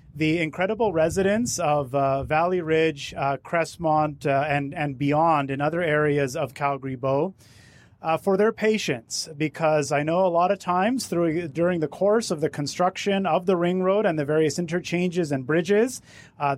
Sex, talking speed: male, 175 wpm